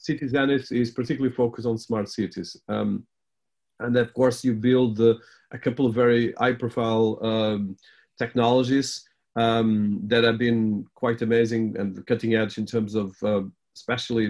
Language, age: English, 40-59